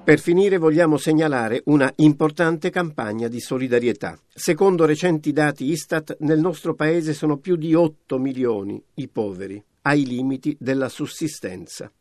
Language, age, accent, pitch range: Italian, 50-69, native, 130-165 Hz